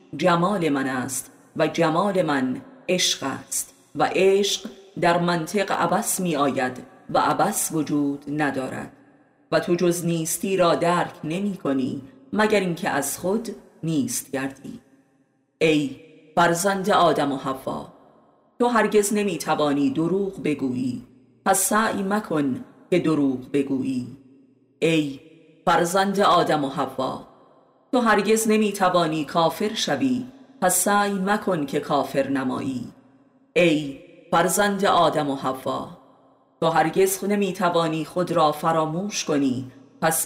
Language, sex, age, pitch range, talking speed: Persian, female, 30-49, 140-200 Hz, 120 wpm